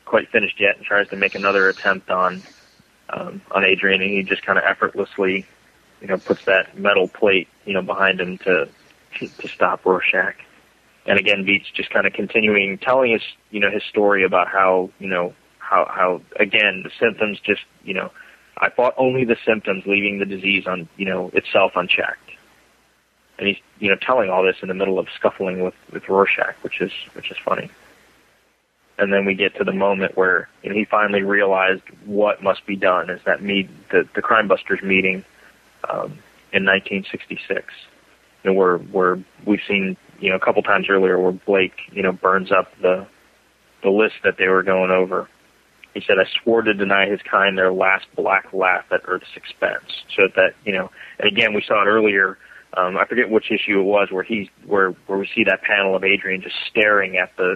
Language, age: English, 20-39